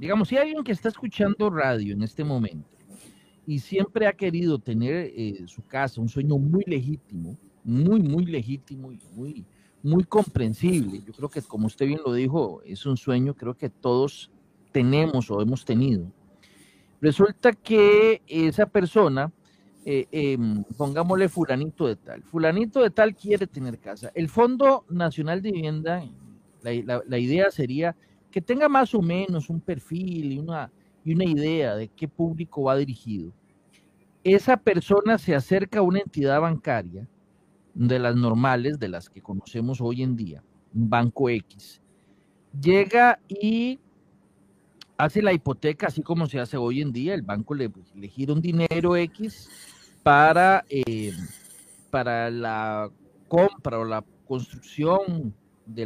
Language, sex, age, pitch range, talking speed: Spanish, male, 40-59, 120-185 Hz, 155 wpm